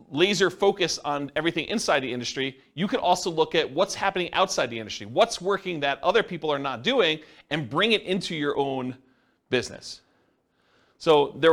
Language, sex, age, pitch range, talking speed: English, male, 40-59, 130-180 Hz, 175 wpm